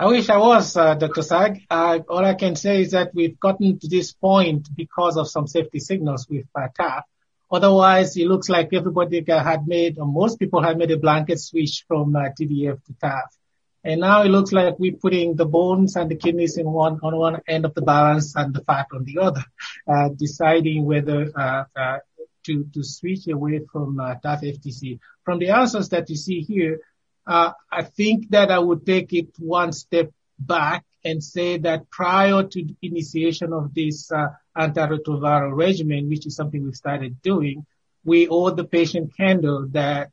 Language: English